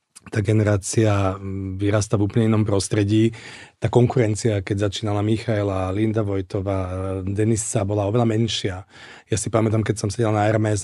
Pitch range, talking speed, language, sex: 105-120 Hz, 145 wpm, Czech, male